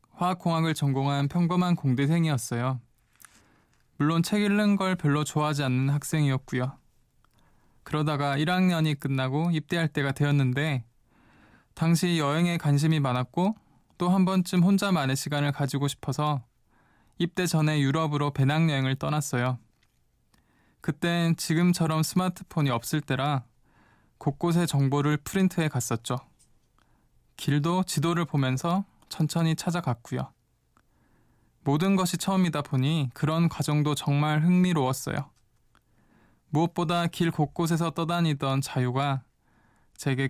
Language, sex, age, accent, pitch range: Korean, male, 20-39, native, 135-165 Hz